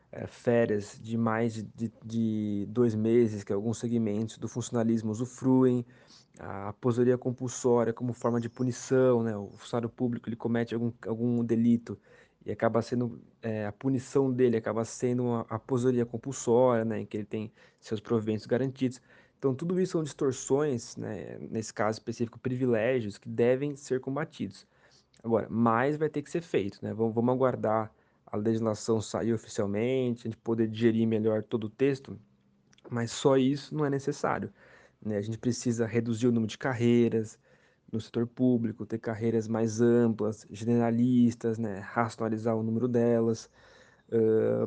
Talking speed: 155 wpm